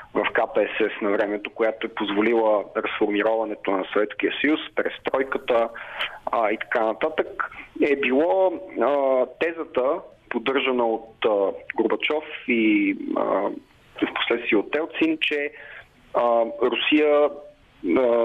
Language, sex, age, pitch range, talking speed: Bulgarian, male, 30-49, 120-195 Hz, 100 wpm